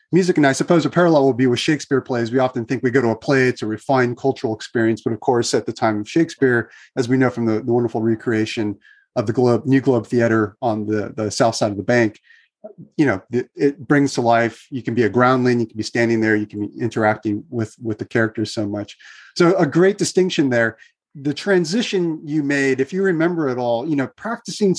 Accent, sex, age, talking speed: American, male, 30-49, 235 wpm